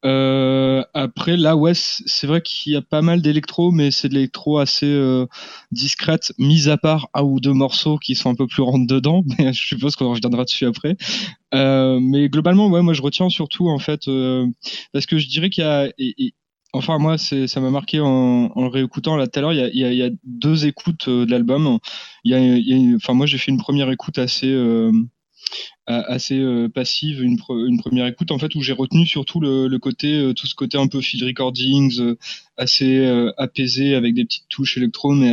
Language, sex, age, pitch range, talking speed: French, male, 20-39, 130-150 Hz, 225 wpm